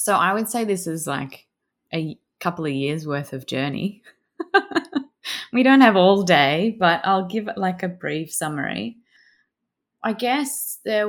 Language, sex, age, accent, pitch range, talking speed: English, female, 20-39, Australian, 135-180 Hz, 160 wpm